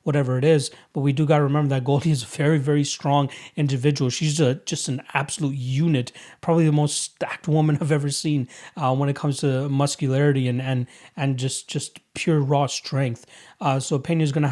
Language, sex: English, male